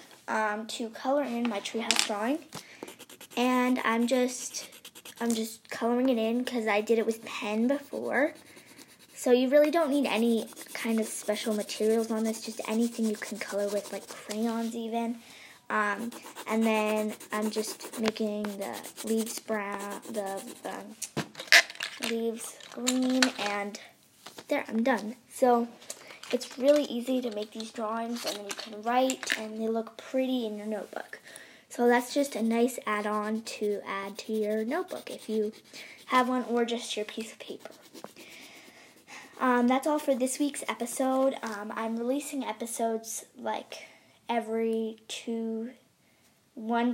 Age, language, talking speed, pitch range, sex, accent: 10-29, English, 150 wpm, 215-250 Hz, female, American